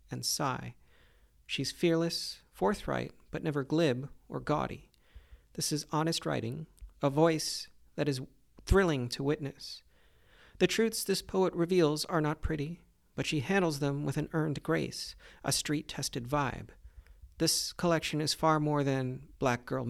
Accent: American